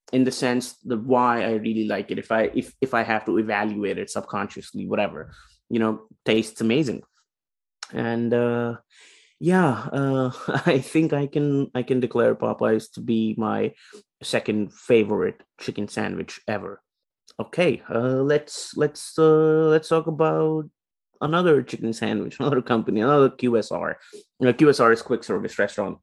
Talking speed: 150 wpm